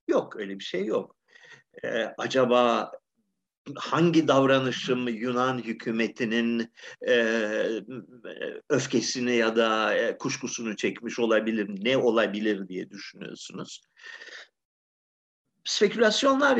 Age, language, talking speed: 50-69, Turkish, 85 wpm